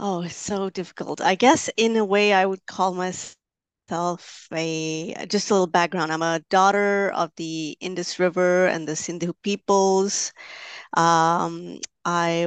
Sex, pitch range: female, 165-195 Hz